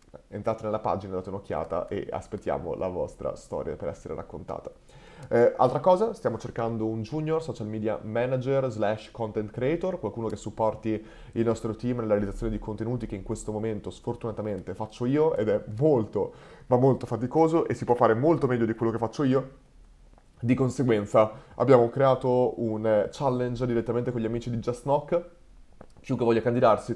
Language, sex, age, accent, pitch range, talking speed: Italian, male, 30-49, native, 110-130 Hz, 170 wpm